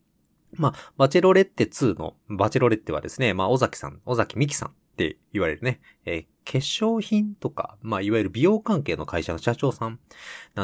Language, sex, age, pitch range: Japanese, male, 20-39, 95-145 Hz